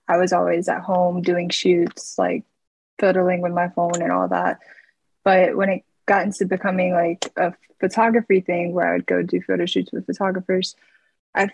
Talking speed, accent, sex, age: 180 wpm, American, female, 20-39